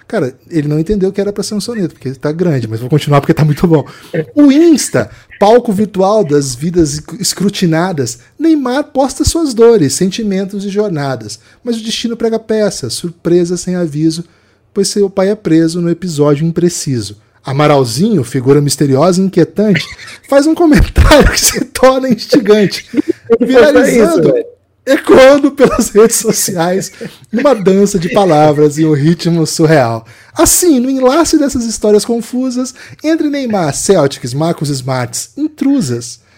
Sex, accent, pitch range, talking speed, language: male, Brazilian, 145-220 Hz, 145 wpm, Portuguese